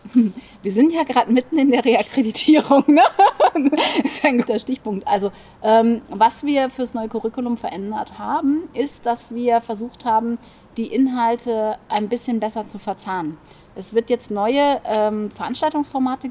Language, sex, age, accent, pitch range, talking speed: German, female, 30-49, German, 210-250 Hz, 145 wpm